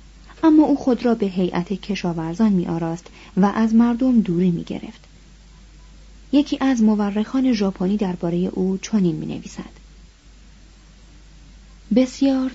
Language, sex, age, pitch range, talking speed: Persian, female, 30-49, 180-235 Hz, 120 wpm